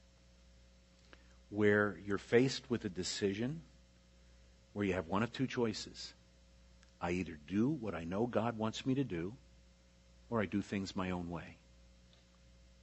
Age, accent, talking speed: 50-69, American, 145 wpm